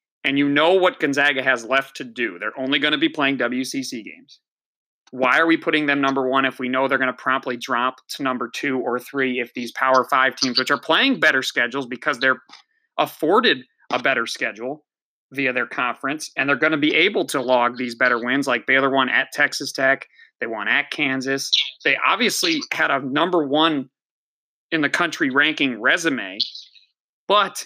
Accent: American